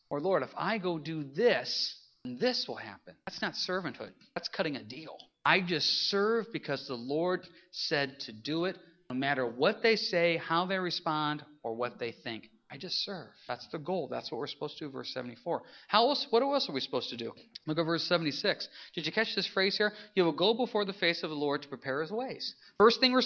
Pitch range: 160-230 Hz